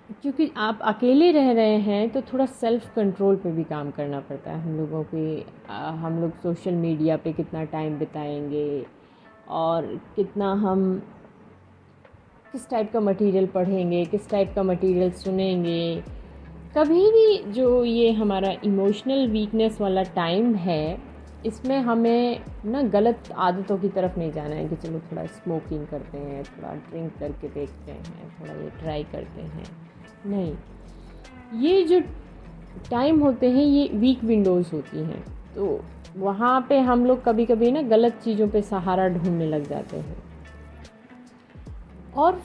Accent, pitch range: native, 175-235 Hz